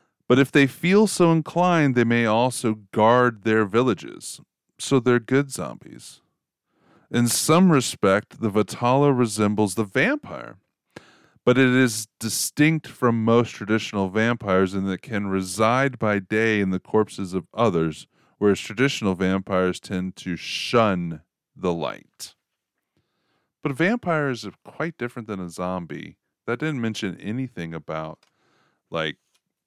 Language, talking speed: English, 130 wpm